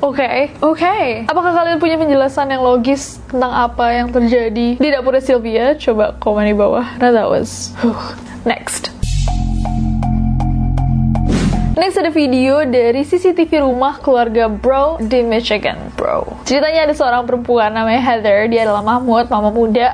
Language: Indonesian